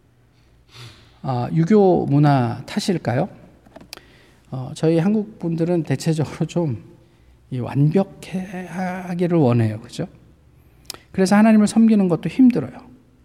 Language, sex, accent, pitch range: Korean, male, native, 130-185 Hz